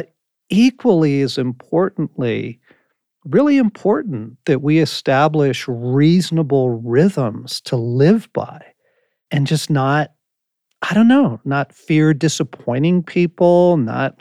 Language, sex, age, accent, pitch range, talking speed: English, male, 40-59, American, 130-170 Hz, 100 wpm